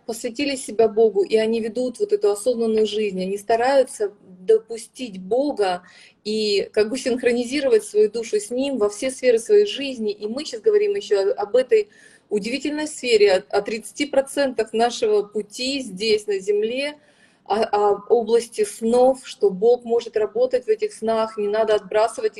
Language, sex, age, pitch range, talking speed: Russian, female, 30-49, 215-350 Hz, 155 wpm